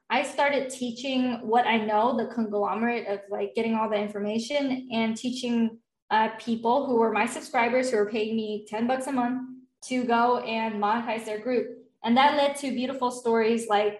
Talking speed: 185 wpm